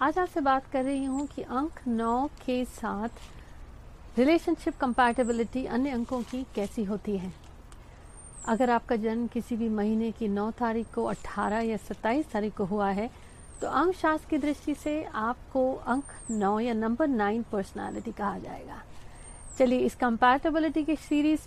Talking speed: 155 wpm